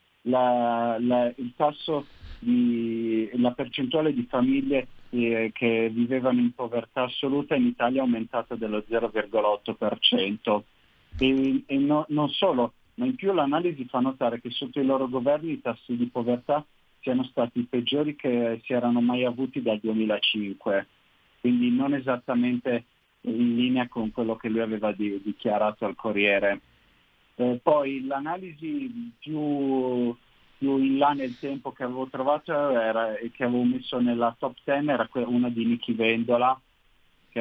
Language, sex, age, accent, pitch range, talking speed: Italian, male, 40-59, native, 115-135 Hz, 150 wpm